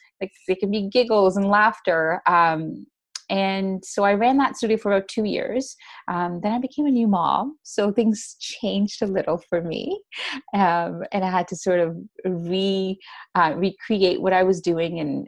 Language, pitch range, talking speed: English, 170-210 Hz, 185 wpm